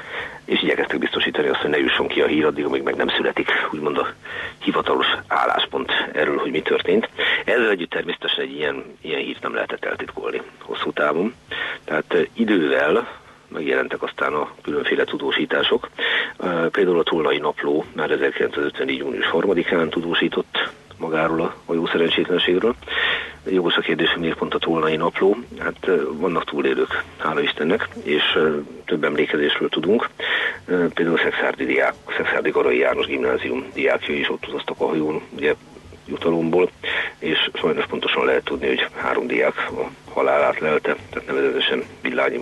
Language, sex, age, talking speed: Hungarian, male, 40-59, 140 wpm